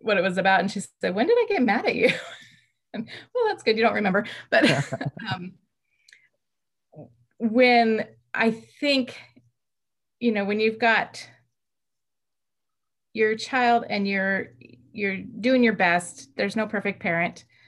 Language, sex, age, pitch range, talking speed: English, female, 30-49, 175-225 Hz, 145 wpm